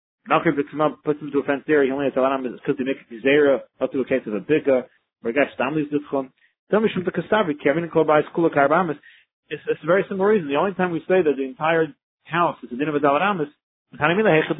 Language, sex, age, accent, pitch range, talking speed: English, male, 40-59, American, 130-165 Hz, 70 wpm